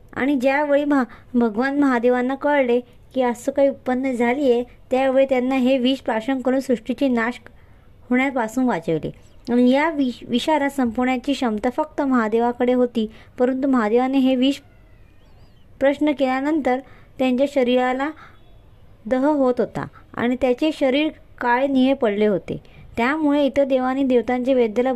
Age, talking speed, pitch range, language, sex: 20-39, 115 wpm, 230-270 Hz, Hindi, male